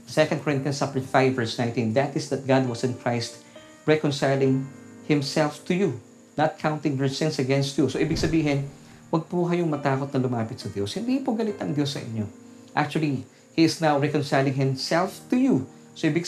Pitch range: 115-145 Hz